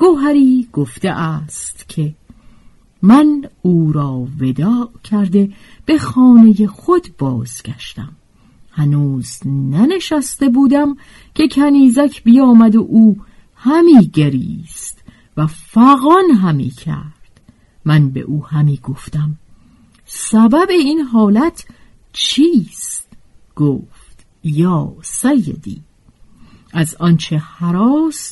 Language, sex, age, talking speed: Persian, female, 50-69, 90 wpm